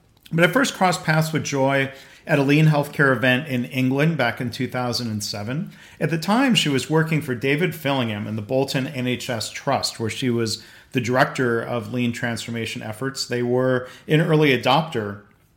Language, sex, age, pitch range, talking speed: English, male, 40-59, 120-145 Hz, 175 wpm